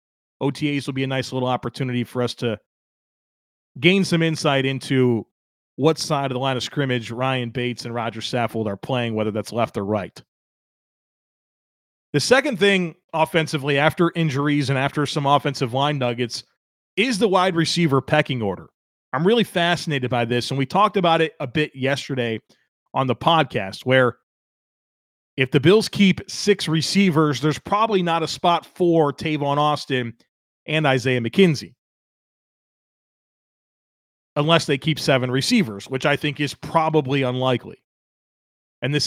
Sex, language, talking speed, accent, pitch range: male, English, 150 wpm, American, 120-160 Hz